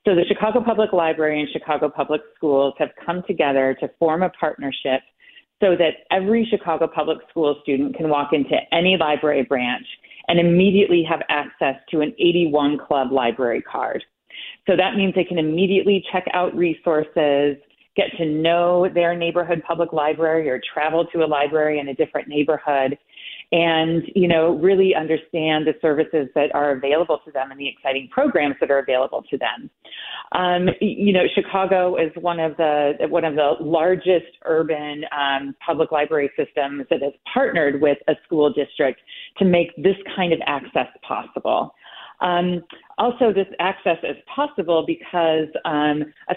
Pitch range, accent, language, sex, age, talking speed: 145-180 Hz, American, English, female, 30-49, 160 wpm